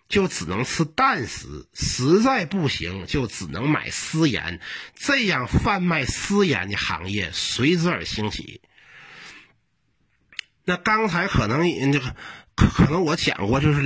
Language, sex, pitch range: Chinese, male, 105-175 Hz